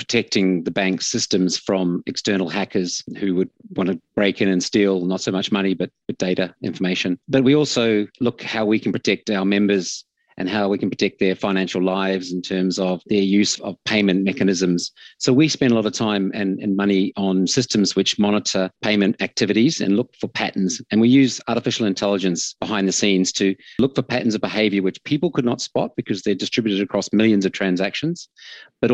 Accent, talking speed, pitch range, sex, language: Australian, 200 wpm, 95-115 Hz, male, English